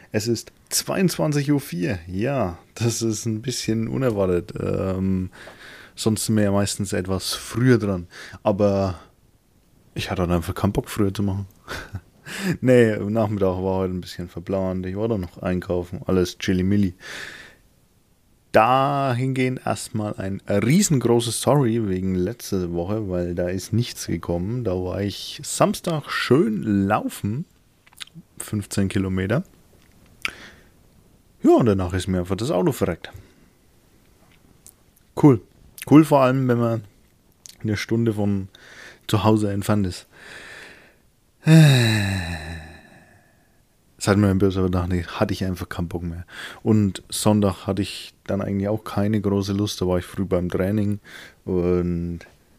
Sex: male